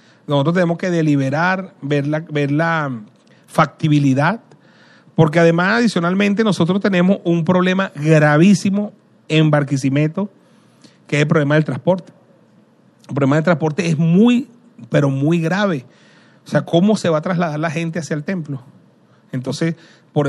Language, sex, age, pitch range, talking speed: Spanish, male, 40-59, 145-175 Hz, 140 wpm